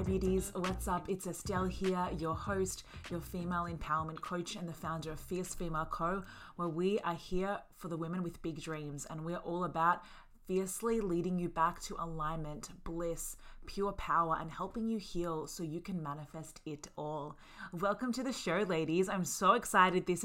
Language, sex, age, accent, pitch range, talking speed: English, female, 20-39, Australian, 165-195 Hz, 180 wpm